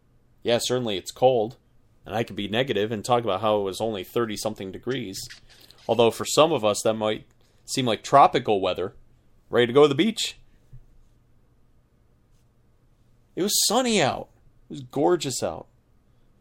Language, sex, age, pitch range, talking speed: English, male, 30-49, 115-145 Hz, 155 wpm